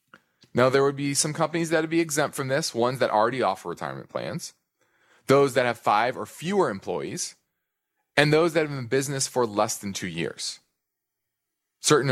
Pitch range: 100-140 Hz